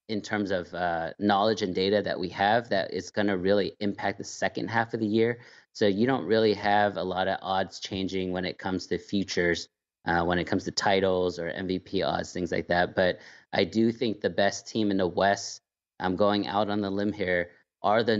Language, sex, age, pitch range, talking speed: English, male, 30-49, 95-105 Hz, 220 wpm